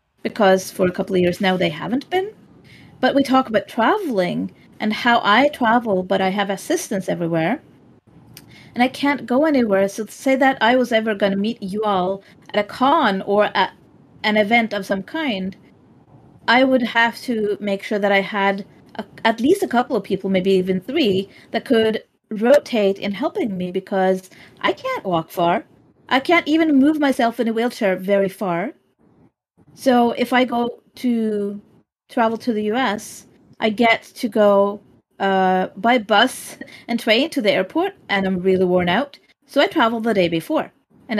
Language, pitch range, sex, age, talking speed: English, 195-260 Hz, female, 30-49, 180 wpm